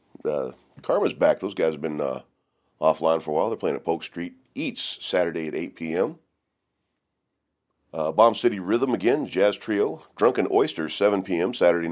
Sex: male